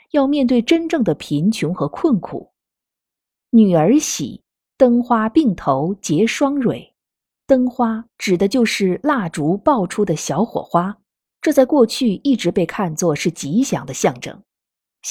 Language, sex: Chinese, female